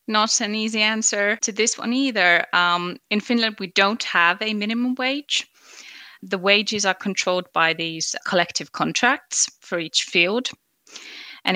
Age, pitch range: 20-39, 170-210 Hz